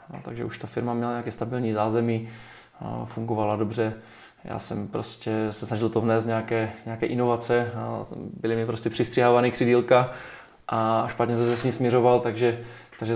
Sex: male